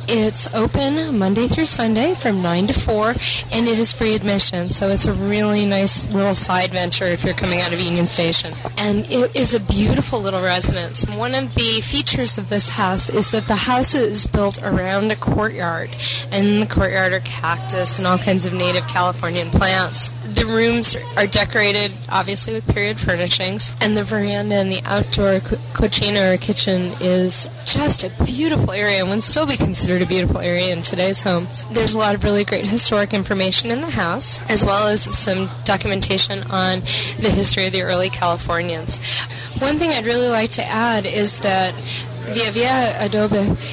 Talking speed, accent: 185 wpm, American